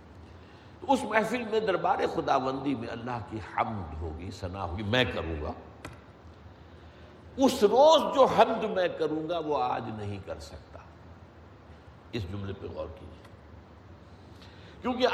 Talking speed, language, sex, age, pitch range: 135 wpm, Urdu, male, 60-79, 90-155 Hz